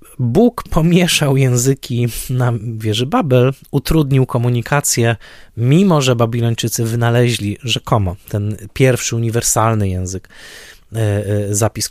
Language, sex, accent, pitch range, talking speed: Polish, male, native, 110-135 Hz, 90 wpm